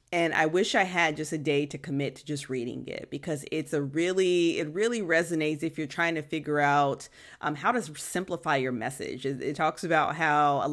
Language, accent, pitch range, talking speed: English, American, 145-180 Hz, 220 wpm